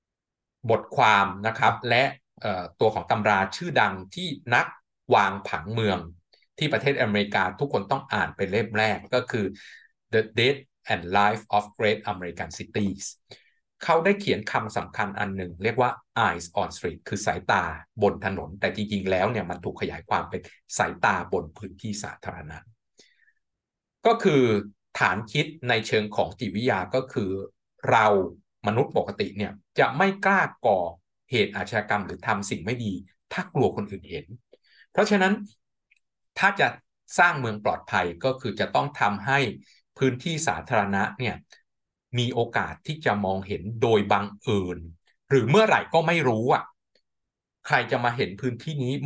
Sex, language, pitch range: male, Thai, 100-135 Hz